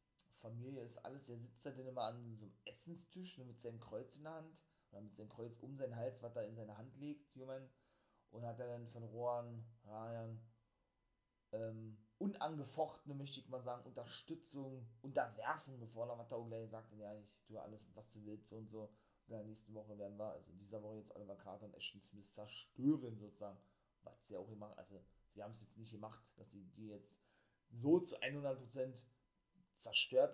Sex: male